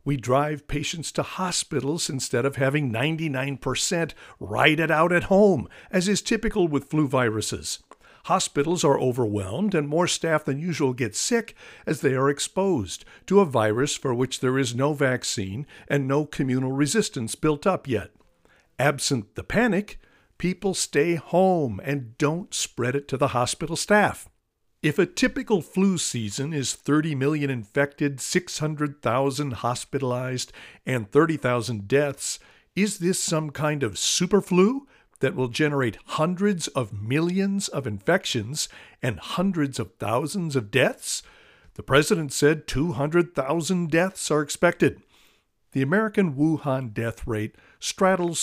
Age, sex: 60-79, male